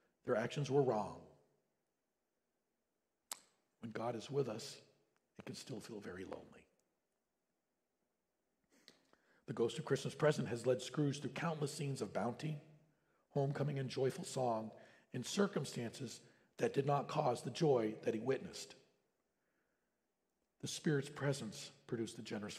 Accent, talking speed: American, 130 wpm